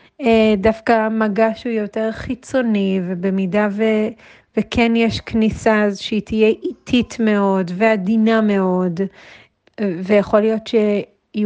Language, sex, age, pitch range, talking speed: Hebrew, female, 30-49, 190-220 Hz, 100 wpm